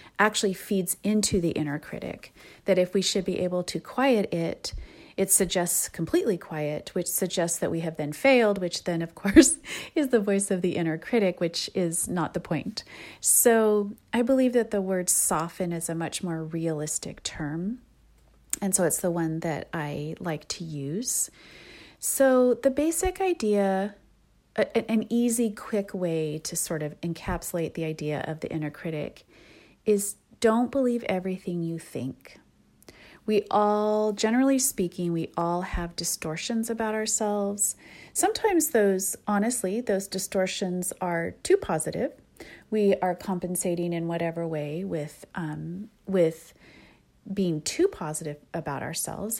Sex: female